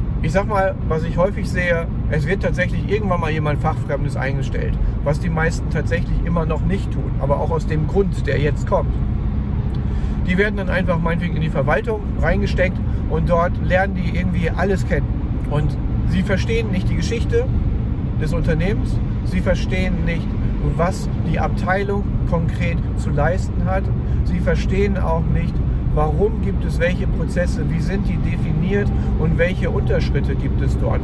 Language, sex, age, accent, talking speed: German, male, 50-69, German, 160 wpm